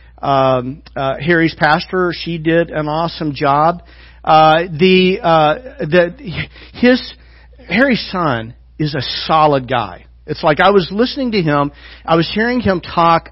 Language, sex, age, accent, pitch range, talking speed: English, male, 50-69, American, 140-185 Hz, 145 wpm